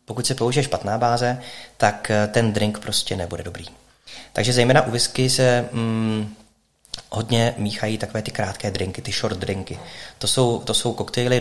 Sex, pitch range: male, 100-115 Hz